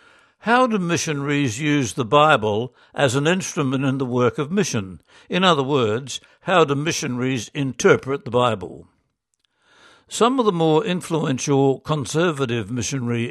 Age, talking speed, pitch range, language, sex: 60-79, 135 wpm, 130-155 Hz, English, male